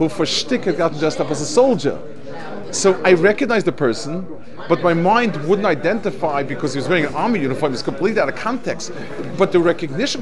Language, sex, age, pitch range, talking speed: English, male, 30-49, 145-190 Hz, 210 wpm